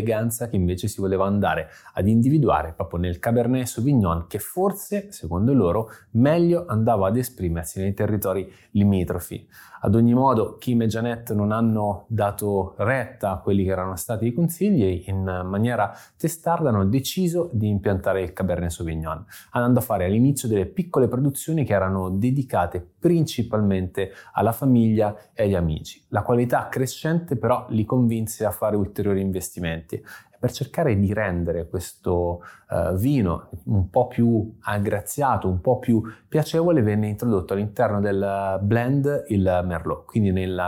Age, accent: 20-39, native